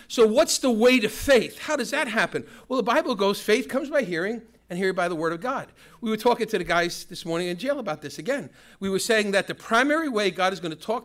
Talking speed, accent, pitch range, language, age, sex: 270 wpm, American, 195-260 Hz, English, 50-69, male